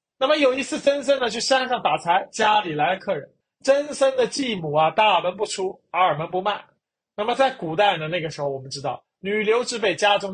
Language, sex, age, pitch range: Chinese, male, 30-49, 160-235 Hz